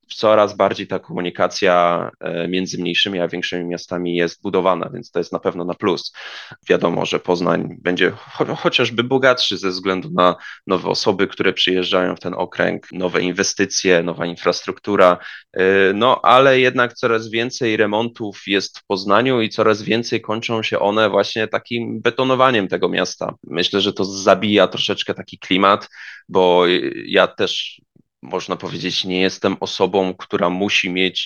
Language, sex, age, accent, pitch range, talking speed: Polish, male, 20-39, native, 90-110 Hz, 145 wpm